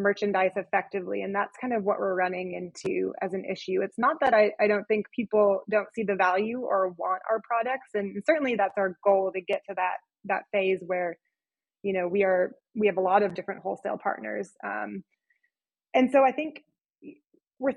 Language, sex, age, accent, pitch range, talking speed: English, female, 20-39, American, 195-230 Hz, 200 wpm